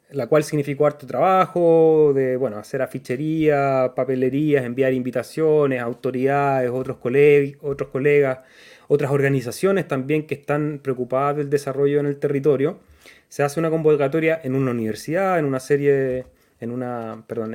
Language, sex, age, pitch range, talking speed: Spanish, male, 30-49, 130-155 Hz, 145 wpm